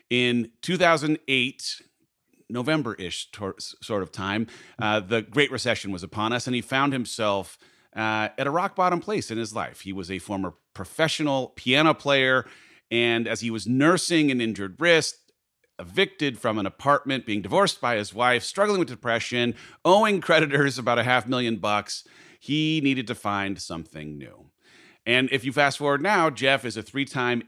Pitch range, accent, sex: 110-140 Hz, American, male